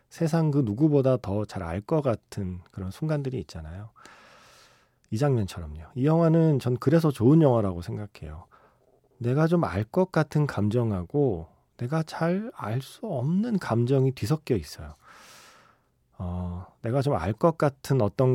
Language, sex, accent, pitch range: Korean, male, native, 95-140 Hz